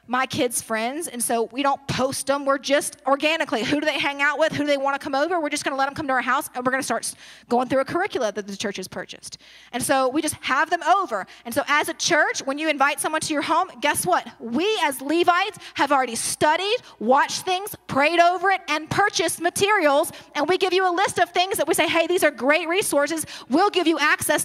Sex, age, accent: female, 30-49, American